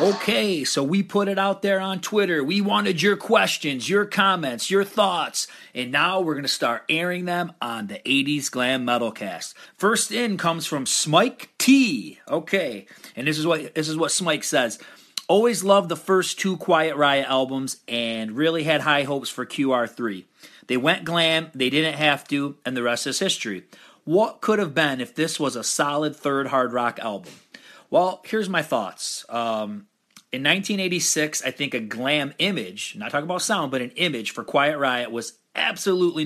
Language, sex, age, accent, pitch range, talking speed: English, male, 40-59, American, 125-170 Hz, 180 wpm